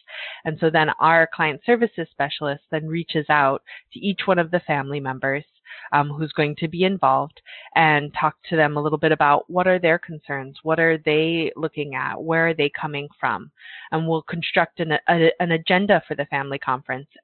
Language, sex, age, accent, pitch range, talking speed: English, female, 20-39, American, 150-175 Hz, 190 wpm